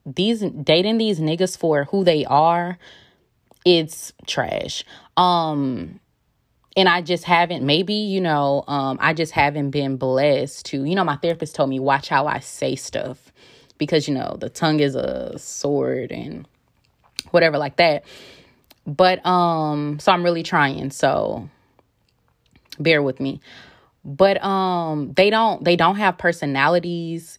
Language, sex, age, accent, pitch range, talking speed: English, female, 20-39, American, 140-175 Hz, 145 wpm